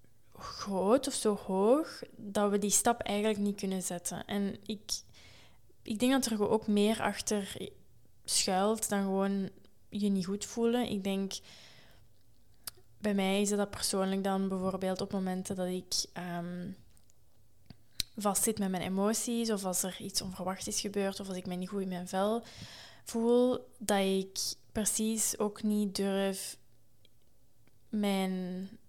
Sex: female